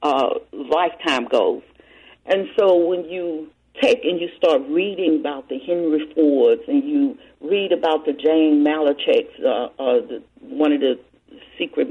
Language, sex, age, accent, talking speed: English, female, 50-69, American, 150 wpm